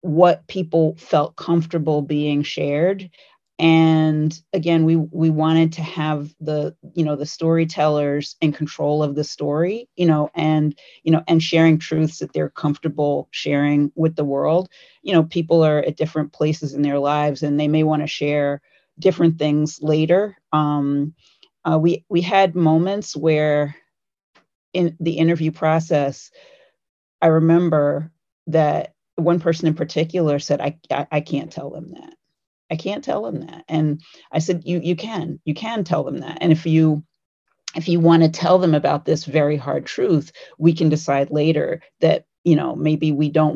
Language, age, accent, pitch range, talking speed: English, 30-49, American, 150-170 Hz, 170 wpm